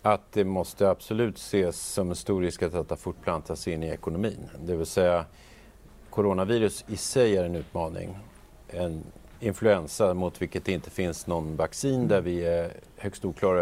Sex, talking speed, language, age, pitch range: male, 160 wpm, English, 40-59, 85-105 Hz